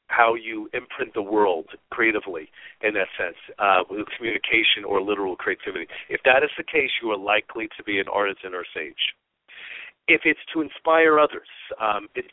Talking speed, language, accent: 175 wpm, English, American